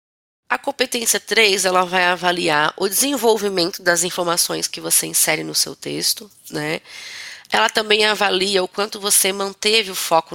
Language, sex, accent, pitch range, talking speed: Portuguese, female, Brazilian, 170-210 Hz, 150 wpm